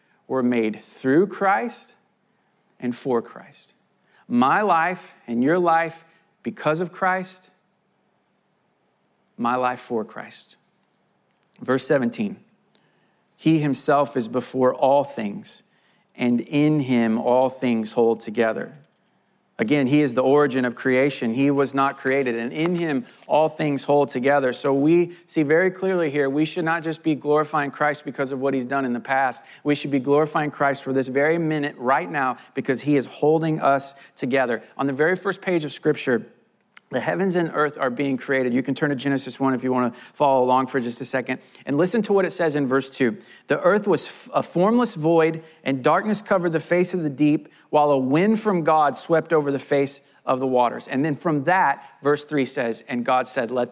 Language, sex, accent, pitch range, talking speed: English, male, American, 130-165 Hz, 185 wpm